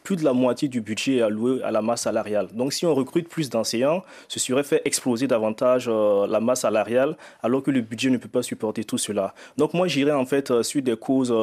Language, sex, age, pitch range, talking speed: French, male, 30-49, 120-150 Hz, 240 wpm